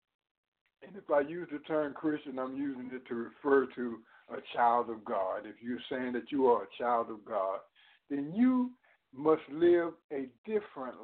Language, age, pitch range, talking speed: English, 60-79, 140-200 Hz, 180 wpm